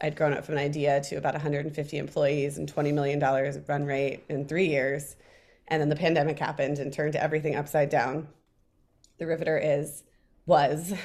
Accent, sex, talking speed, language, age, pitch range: American, female, 175 wpm, English, 30-49, 145-160 Hz